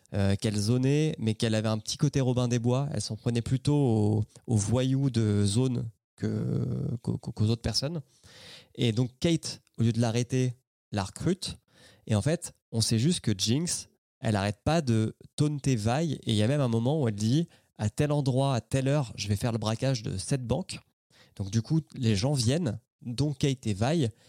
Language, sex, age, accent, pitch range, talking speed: French, male, 20-39, French, 110-135 Hz, 205 wpm